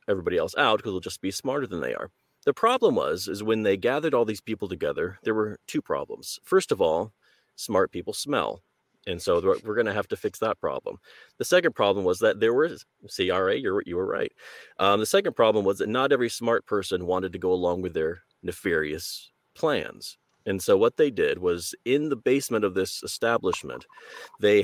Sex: male